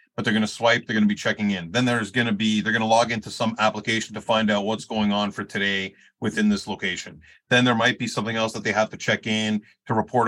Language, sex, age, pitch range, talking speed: English, male, 30-49, 110-130 Hz, 280 wpm